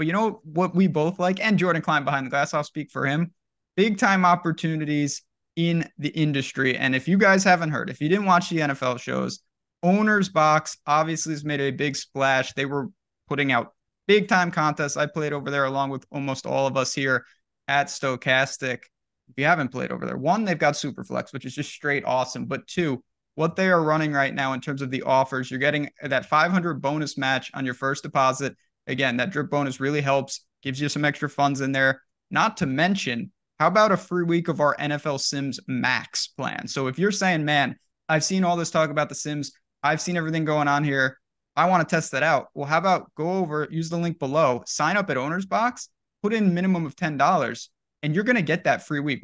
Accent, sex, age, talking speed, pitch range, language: American, male, 20-39, 220 wpm, 135-170 Hz, English